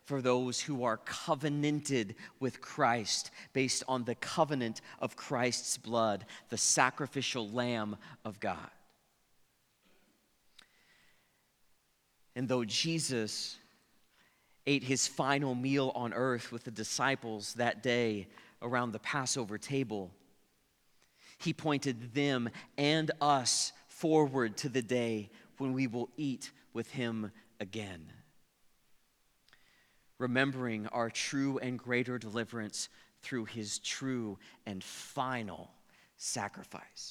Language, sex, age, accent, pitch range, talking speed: English, male, 40-59, American, 115-135 Hz, 105 wpm